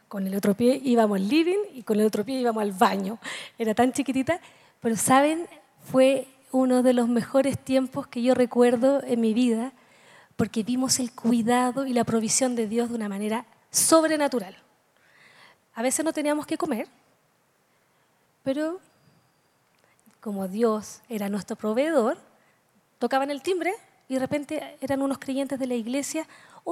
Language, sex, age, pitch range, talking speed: Spanish, female, 20-39, 220-270 Hz, 155 wpm